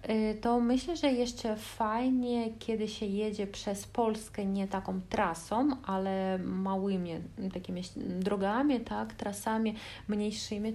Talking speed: 110 wpm